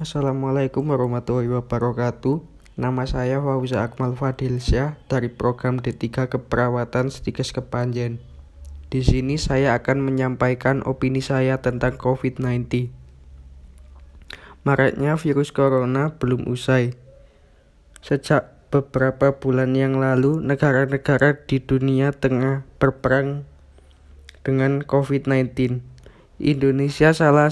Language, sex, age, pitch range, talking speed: Indonesian, male, 20-39, 125-140 Hz, 90 wpm